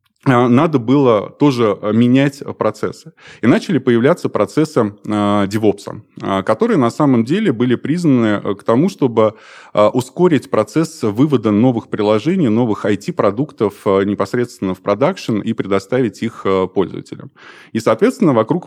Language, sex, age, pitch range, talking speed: Russian, male, 20-39, 100-125 Hz, 115 wpm